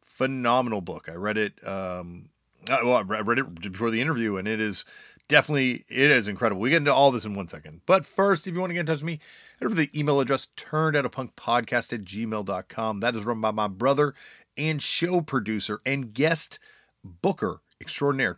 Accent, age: American, 30-49